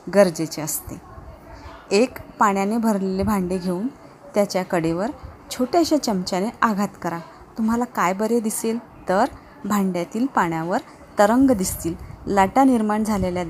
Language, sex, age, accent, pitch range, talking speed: Marathi, female, 30-49, native, 185-225 Hz, 110 wpm